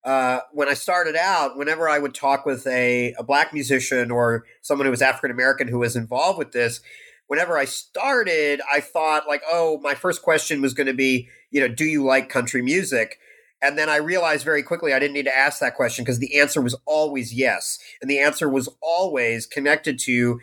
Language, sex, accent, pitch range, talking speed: English, male, American, 125-150 Hz, 210 wpm